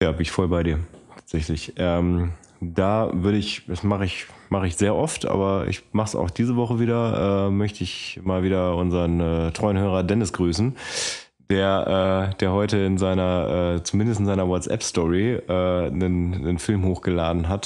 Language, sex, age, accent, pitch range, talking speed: German, male, 20-39, German, 90-110 Hz, 185 wpm